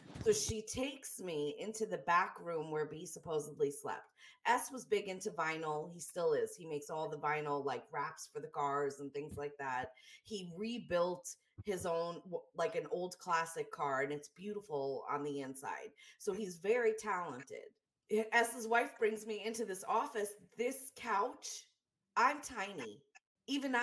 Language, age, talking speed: English, 30-49, 165 wpm